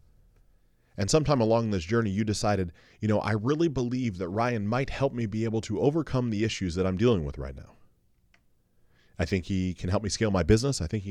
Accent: American